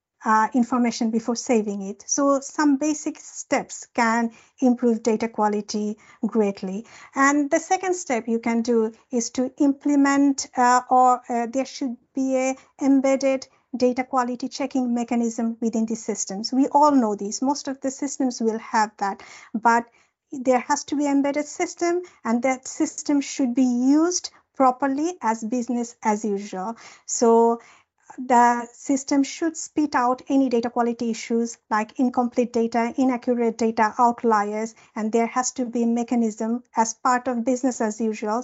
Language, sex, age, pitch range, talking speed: English, female, 50-69, 235-275 Hz, 150 wpm